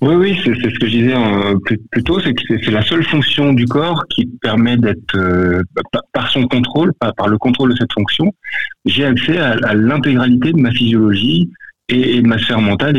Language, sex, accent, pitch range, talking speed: French, male, French, 105-140 Hz, 230 wpm